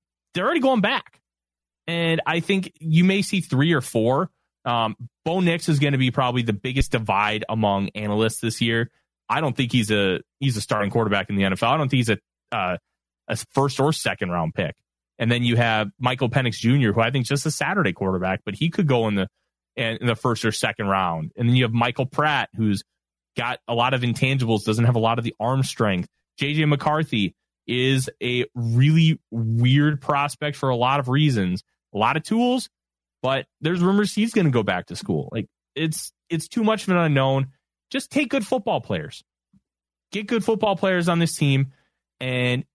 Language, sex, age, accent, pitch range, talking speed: English, male, 30-49, American, 110-155 Hz, 205 wpm